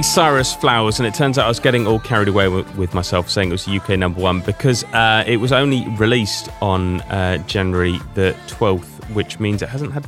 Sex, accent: male, British